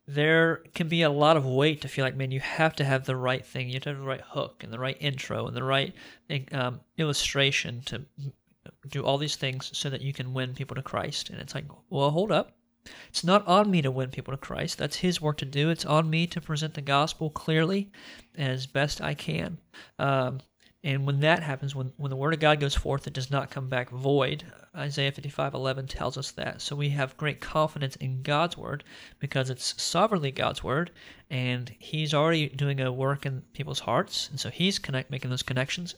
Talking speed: 220 wpm